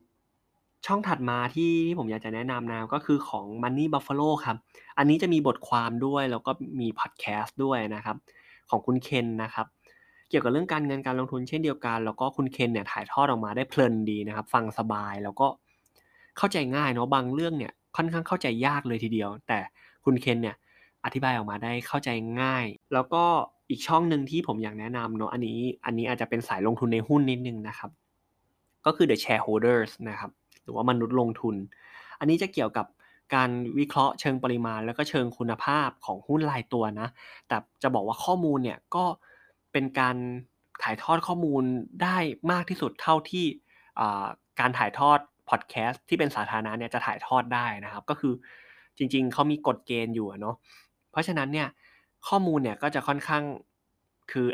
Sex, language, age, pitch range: male, Thai, 20-39, 115-150 Hz